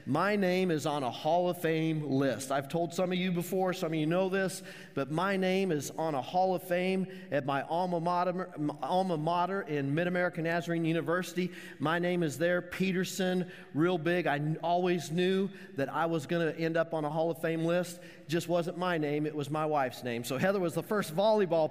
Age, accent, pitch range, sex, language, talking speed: 40-59, American, 155-195 Hz, male, English, 215 wpm